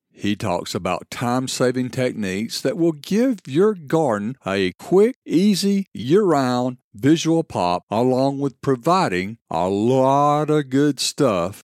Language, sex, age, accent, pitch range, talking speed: English, male, 50-69, American, 120-170 Hz, 125 wpm